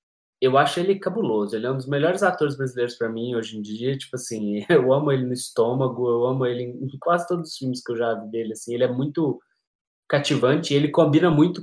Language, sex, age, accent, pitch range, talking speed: Portuguese, male, 20-39, Brazilian, 115-150 Hz, 225 wpm